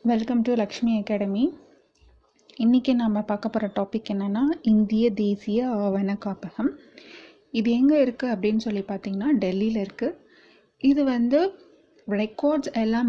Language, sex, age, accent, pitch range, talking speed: Tamil, female, 30-49, native, 195-235 Hz, 120 wpm